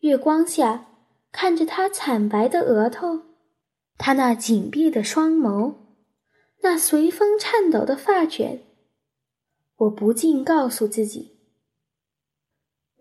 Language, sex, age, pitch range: Chinese, female, 10-29, 225-335 Hz